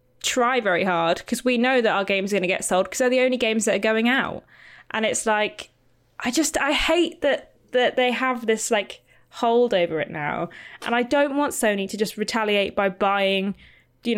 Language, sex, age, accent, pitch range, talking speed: English, female, 20-39, British, 190-235 Hz, 215 wpm